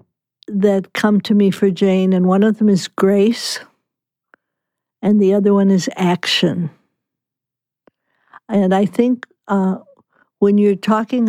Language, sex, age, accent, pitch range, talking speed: English, female, 60-79, American, 190-210 Hz, 135 wpm